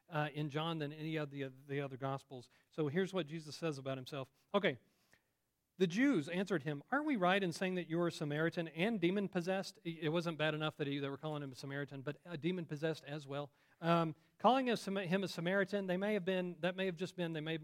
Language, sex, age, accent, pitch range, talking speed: English, male, 40-59, American, 140-180 Hz, 235 wpm